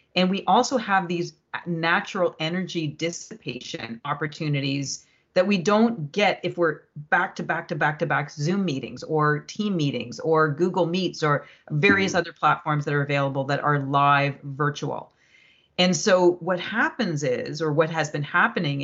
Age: 40-59